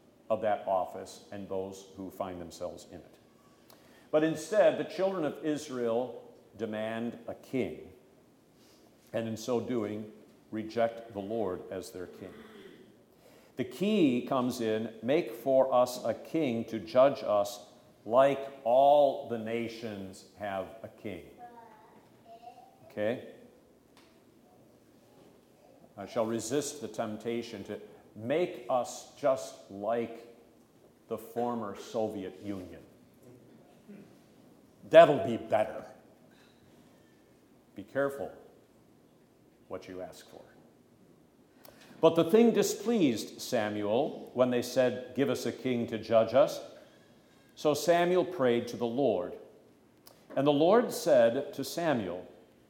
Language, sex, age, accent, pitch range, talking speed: English, male, 50-69, American, 110-145 Hz, 115 wpm